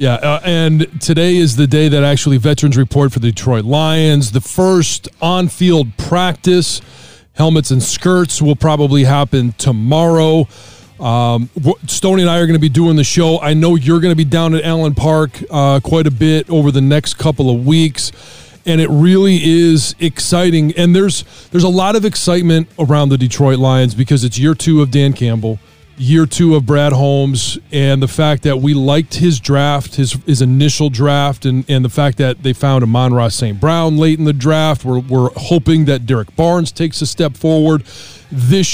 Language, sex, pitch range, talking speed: English, male, 135-165 Hz, 190 wpm